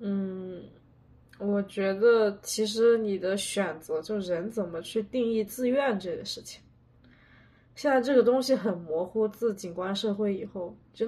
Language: Chinese